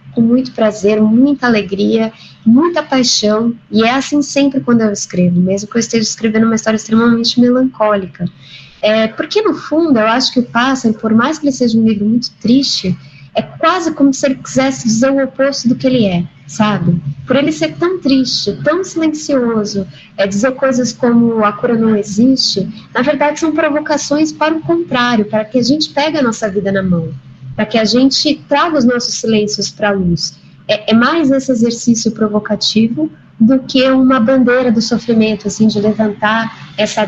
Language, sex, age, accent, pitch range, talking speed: Portuguese, female, 10-29, Brazilian, 210-265 Hz, 185 wpm